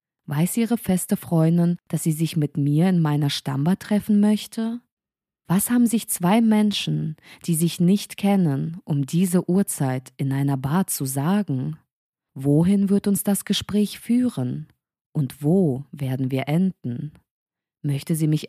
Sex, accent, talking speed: female, German, 145 wpm